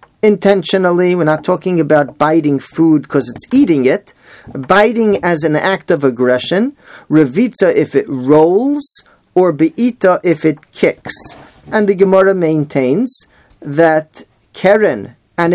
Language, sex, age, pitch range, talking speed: English, male, 40-59, 140-185 Hz, 125 wpm